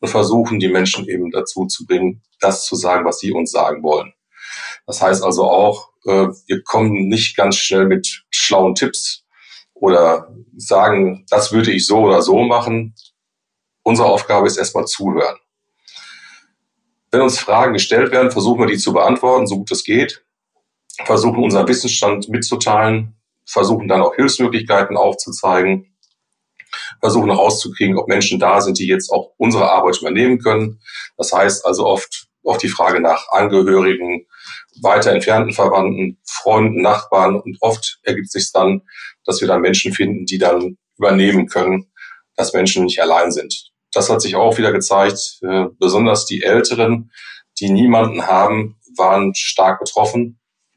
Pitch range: 95-115 Hz